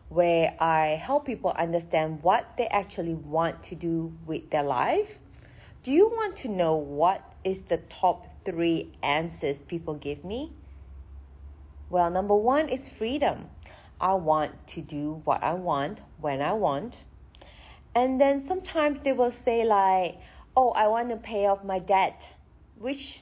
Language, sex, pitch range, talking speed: English, female, 165-245 Hz, 155 wpm